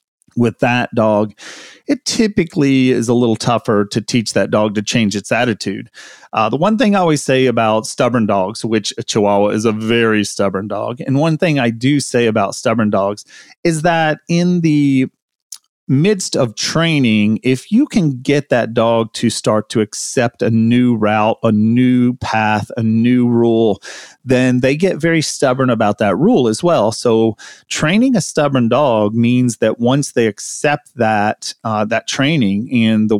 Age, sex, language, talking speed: 30-49, male, English, 175 wpm